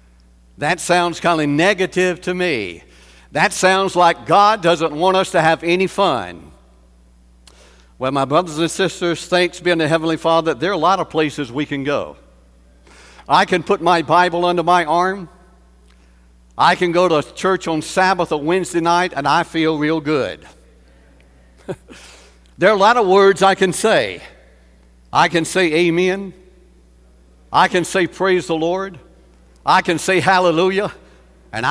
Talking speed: 160 wpm